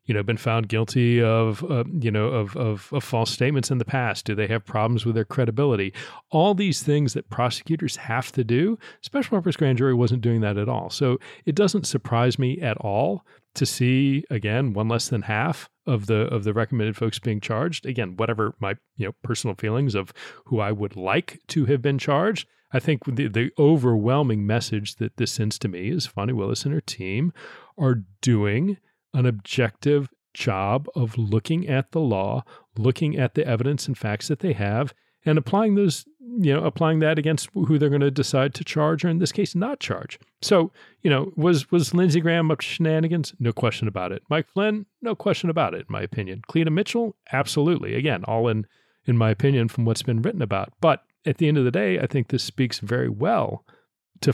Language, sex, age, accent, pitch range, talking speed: English, male, 40-59, American, 115-155 Hz, 205 wpm